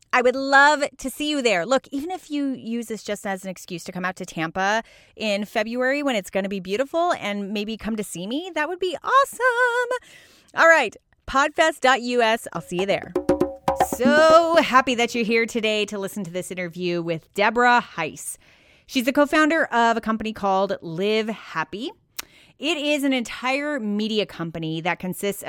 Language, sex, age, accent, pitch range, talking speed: English, female, 30-49, American, 185-255 Hz, 180 wpm